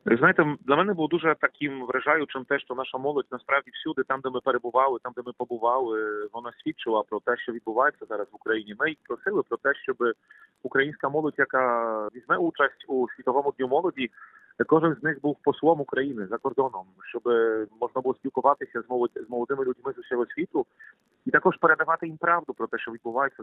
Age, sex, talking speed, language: 40-59, male, 185 wpm, Ukrainian